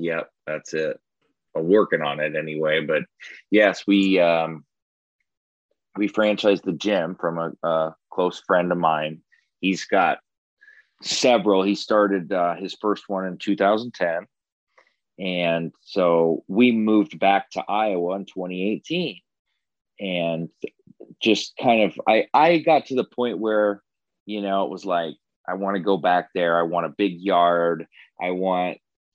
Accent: American